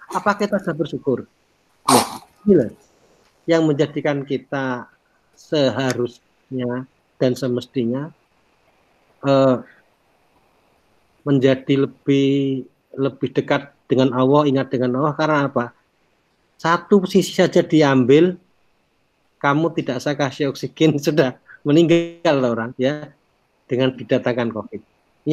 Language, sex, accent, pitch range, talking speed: Indonesian, male, native, 135-190 Hz, 90 wpm